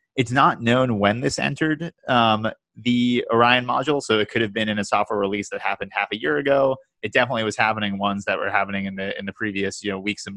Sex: male